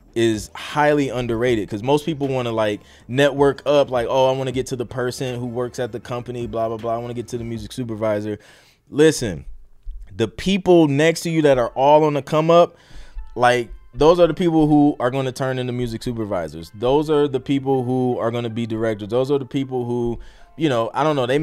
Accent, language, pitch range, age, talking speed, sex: American, English, 105-130 Hz, 20-39, 230 wpm, male